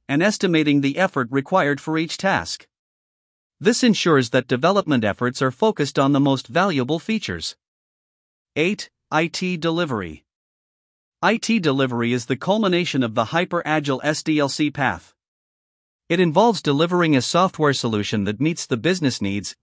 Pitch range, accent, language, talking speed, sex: 125-170 Hz, American, English, 135 wpm, male